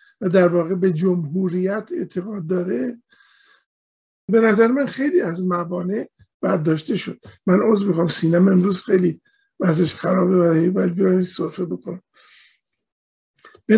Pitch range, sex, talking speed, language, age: 185-245 Hz, male, 120 wpm, Persian, 50-69